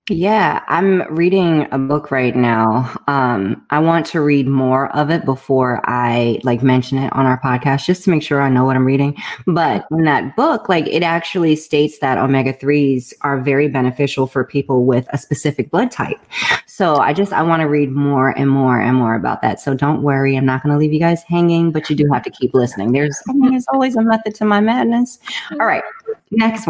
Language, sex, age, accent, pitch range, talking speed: English, female, 30-49, American, 135-180 Hz, 220 wpm